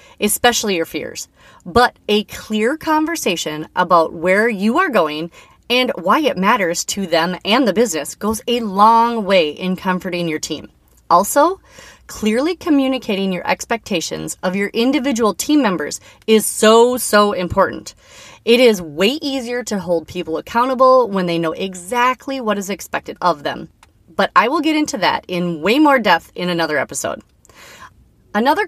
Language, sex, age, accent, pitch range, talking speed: English, female, 30-49, American, 180-260 Hz, 155 wpm